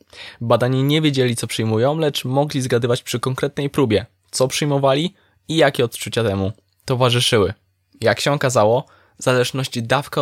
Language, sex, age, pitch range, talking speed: Polish, male, 20-39, 110-135 Hz, 140 wpm